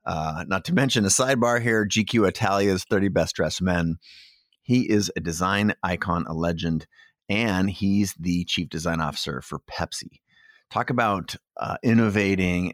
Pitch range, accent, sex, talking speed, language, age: 85-110 Hz, American, male, 150 wpm, English, 30-49